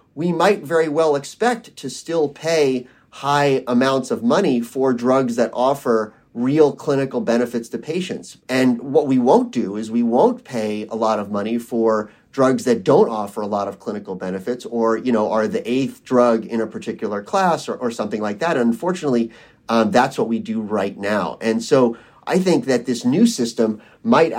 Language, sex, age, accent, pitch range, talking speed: English, male, 30-49, American, 115-140 Hz, 190 wpm